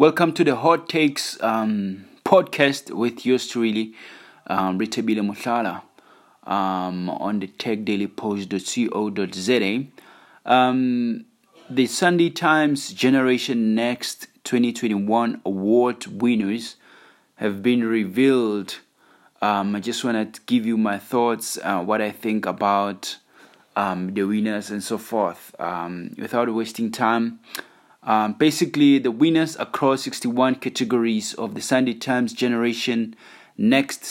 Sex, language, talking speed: male, English, 115 wpm